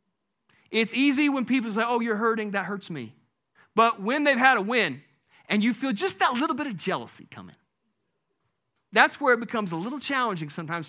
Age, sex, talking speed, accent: 40-59, male, 195 wpm, American